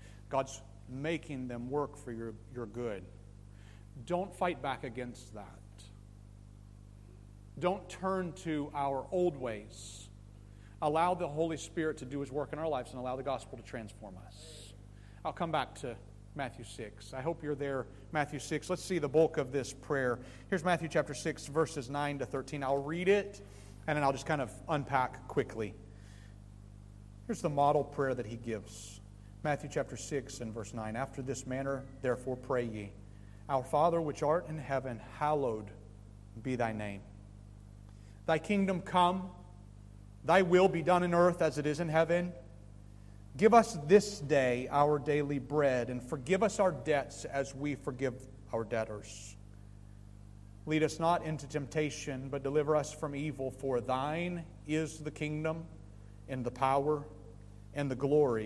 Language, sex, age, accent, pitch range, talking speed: English, male, 40-59, American, 100-150 Hz, 160 wpm